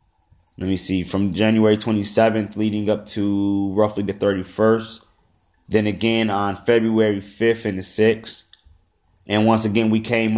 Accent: American